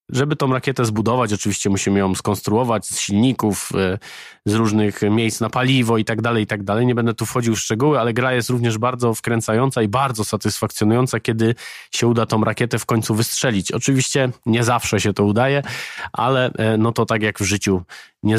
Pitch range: 105-125 Hz